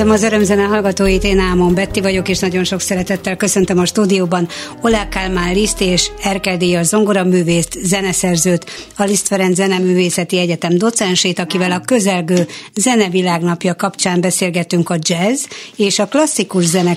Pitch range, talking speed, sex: 175-205 Hz, 145 wpm, female